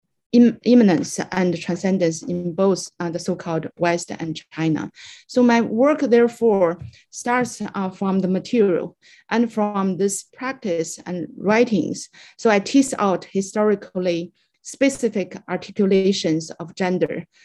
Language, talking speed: English, 120 wpm